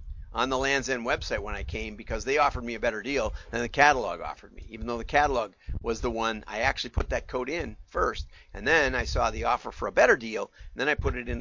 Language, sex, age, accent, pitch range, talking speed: English, male, 50-69, American, 85-130 Hz, 265 wpm